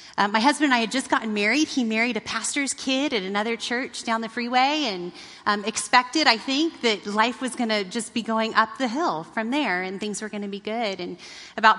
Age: 30-49